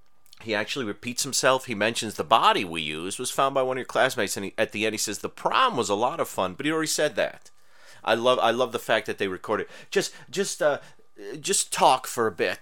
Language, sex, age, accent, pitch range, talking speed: English, male, 30-49, American, 100-135 Hz, 250 wpm